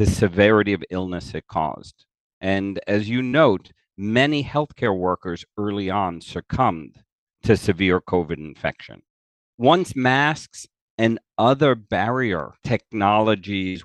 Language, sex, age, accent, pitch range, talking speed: English, male, 50-69, American, 95-130 Hz, 115 wpm